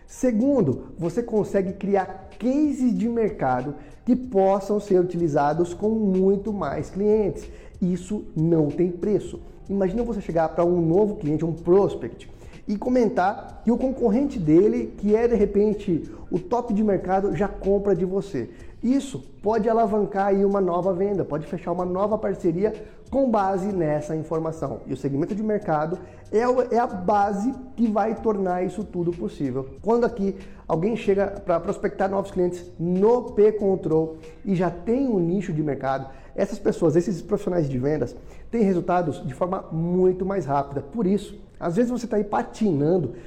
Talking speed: 160 wpm